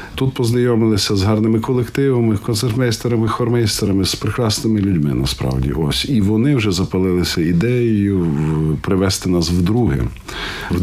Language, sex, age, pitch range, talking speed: Ukrainian, male, 50-69, 85-115 Hz, 115 wpm